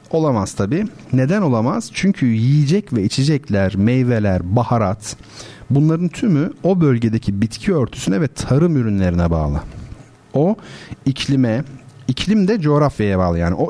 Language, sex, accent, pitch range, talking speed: Turkish, male, native, 105-140 Hz, 125 wpm